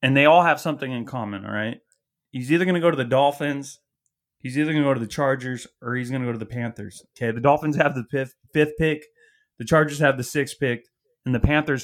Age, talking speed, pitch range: 30-49, 255 wpm, 125-145 Hz